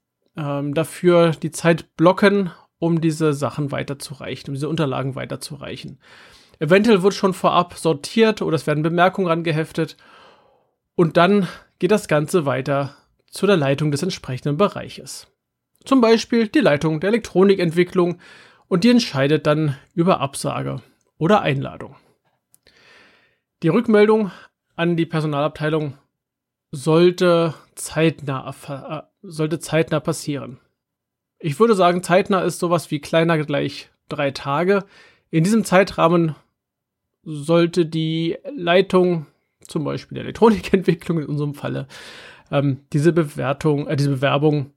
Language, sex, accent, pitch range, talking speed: German, male, German, 145-180 Hz, 115 wpm